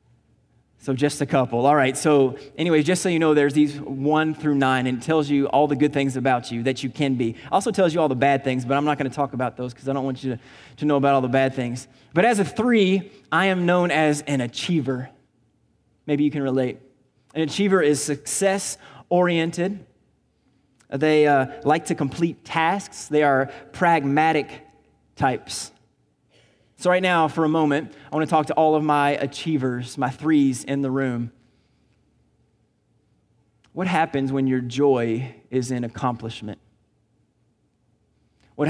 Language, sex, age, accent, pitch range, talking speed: English, male, 20-39, American, 125-150 Hz, 180 wpm